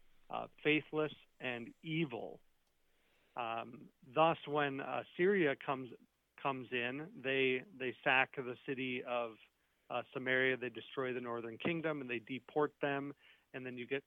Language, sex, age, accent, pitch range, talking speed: English, male, 40-59, American, 120-145 Hz, 140 wpm